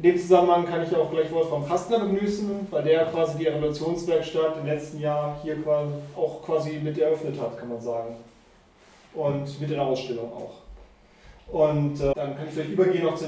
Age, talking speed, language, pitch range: 30-49, 195 wpm, German, 145-175 Hz